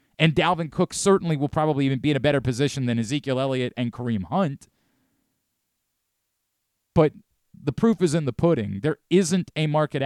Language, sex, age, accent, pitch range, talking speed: English, male, 30-49, American, 120-165 Hz, 175 wpm